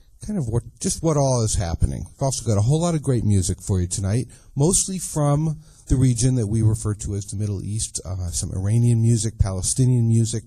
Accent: American